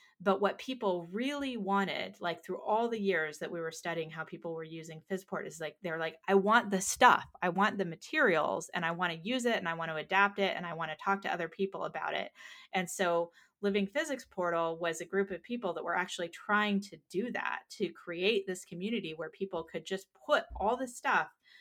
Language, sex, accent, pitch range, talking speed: English, female, American, 165-200 Hz, 230 wpm